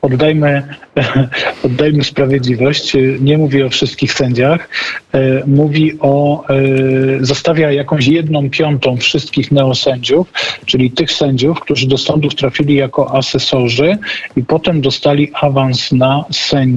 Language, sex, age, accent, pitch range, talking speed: Polish, male, 50-69, native, 130-145 Hz, 105 wpm